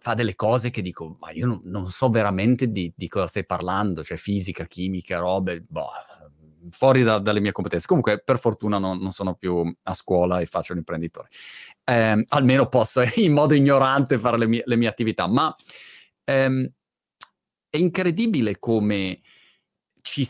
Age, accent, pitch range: 30-49, native, 95-125 Hz